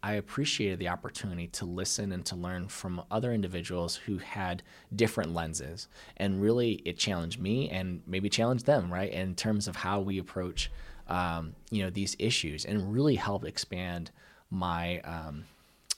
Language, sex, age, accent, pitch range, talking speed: English, male, 20-39, American, 90-105 Hz, 160 wpm